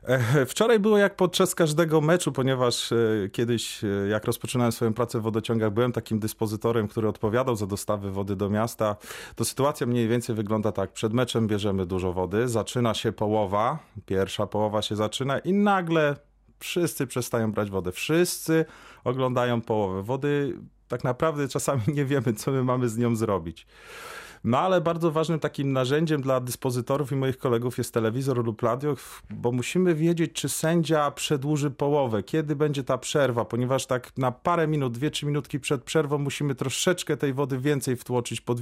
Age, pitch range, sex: 30-49, 115-145 Hz, male